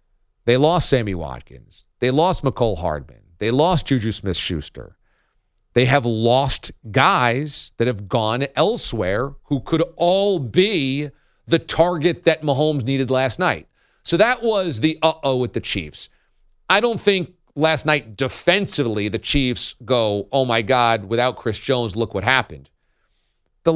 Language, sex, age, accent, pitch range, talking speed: English, male, 40-59, American, 115-175 Hz, 150 wpm